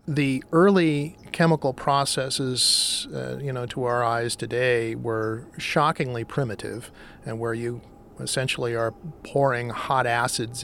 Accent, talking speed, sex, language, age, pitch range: American, 125 wpm, male, English, 40-59, 110-140 Hz